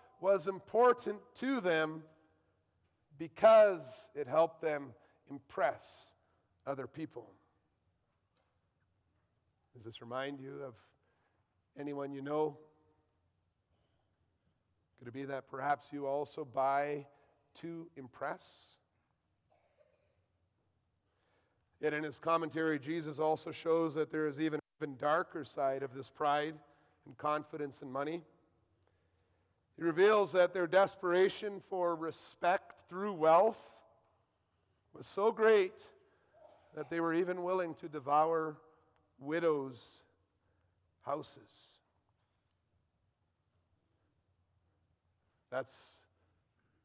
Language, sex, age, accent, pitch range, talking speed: English, male, 40-59, American, 100-160 Hz, 95 wpm